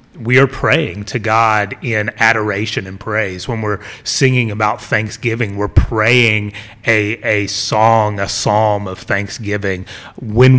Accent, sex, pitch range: American, male, 100-125 Hz